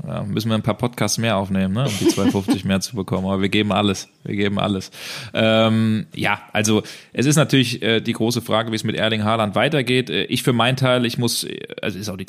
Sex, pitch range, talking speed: male, 105-120 Hz, 245 wpm